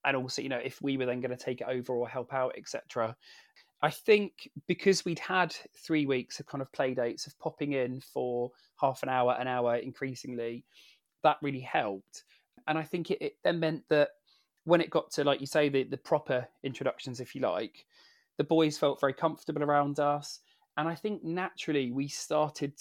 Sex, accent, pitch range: male, British, 130-160 Hz